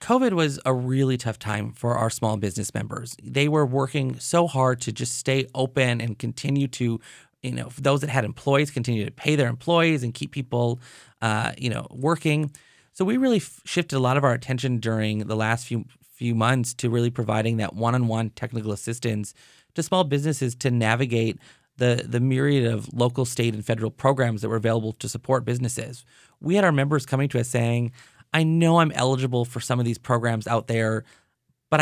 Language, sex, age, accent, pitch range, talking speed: English, male, 30-49, American, 115-135 Hz, 195 wpm